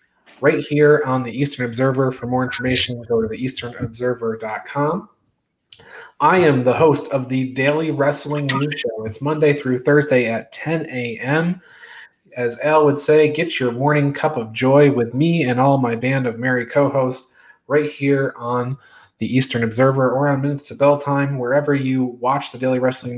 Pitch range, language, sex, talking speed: 125-150 Hz, English, male, 170 wpm